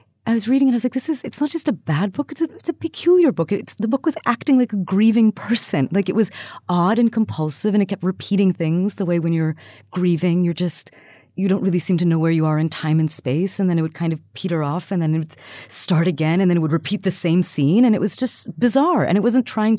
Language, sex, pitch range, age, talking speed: English, female, 160-210 Hz, 30-49, 275 wpm